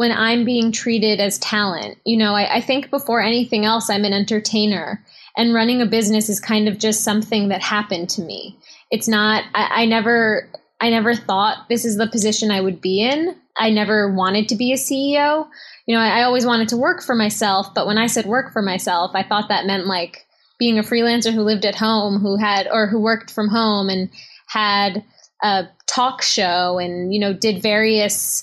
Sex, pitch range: female, 200-235 Hz